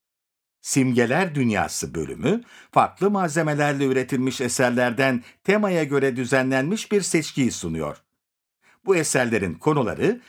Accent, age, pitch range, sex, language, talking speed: native, 60-79, 125-190 Hz, male, Turkish, 95 wpm